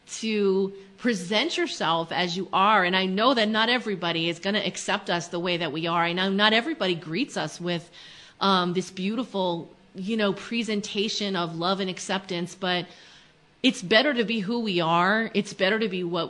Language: English